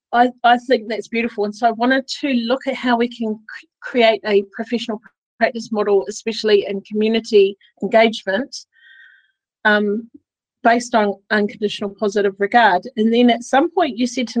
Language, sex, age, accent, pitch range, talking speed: English, female, 40-59, Australian, 205-250 Hz, 160 wpm